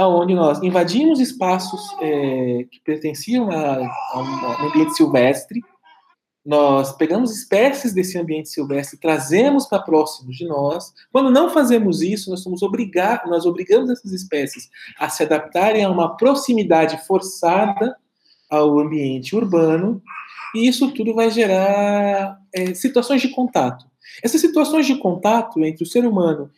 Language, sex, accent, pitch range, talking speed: Portuguese, male, Brazilian, 165-245 Hz, 130 wpm